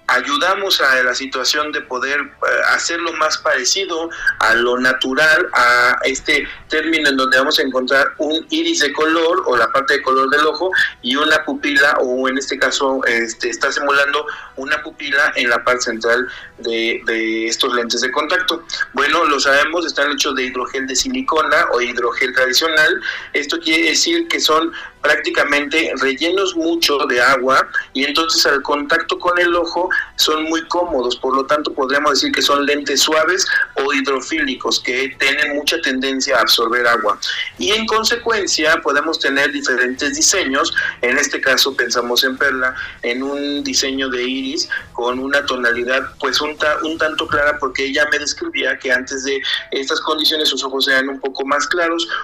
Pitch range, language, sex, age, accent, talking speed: 130-175 Hz, Spanish, male, 40-59, Mexican, 170 wpm